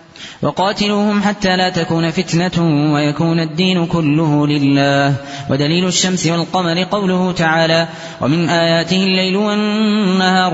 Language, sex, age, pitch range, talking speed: Arabic, male, 20-39, 150-185 Hz, 100 wpm